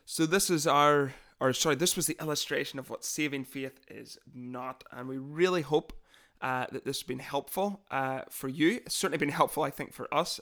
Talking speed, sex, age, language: 215 wpm, male, 30-49, English